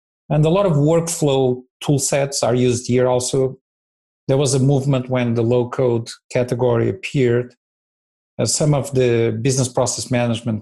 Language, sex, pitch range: English, male, 115-135 Hz